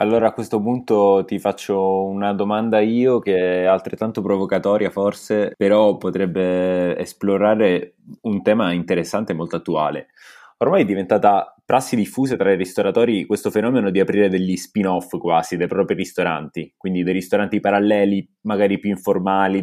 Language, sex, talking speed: Italian, male, 145 wpm